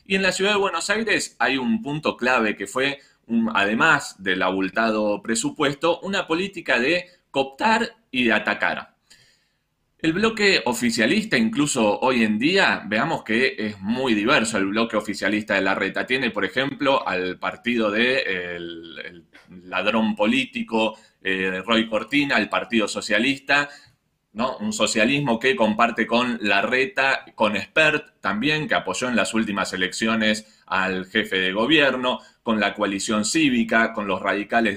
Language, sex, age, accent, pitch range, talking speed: Spanish, male, 20-39, Argentinian, 100-150 Hz, 145 wpm